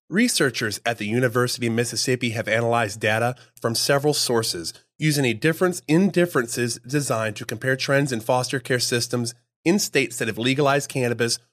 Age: 30-49